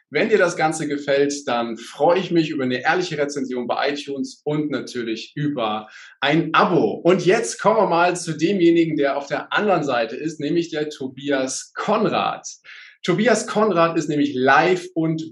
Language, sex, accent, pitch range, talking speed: German, male, German, 140-185 Hz, 170 wpm